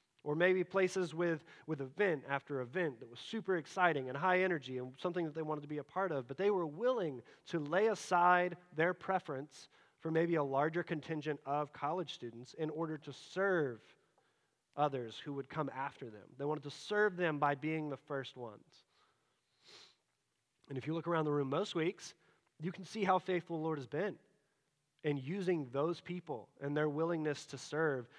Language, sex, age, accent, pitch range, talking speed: English, male, 30-49, American, 140-180 Hz, 190 wpm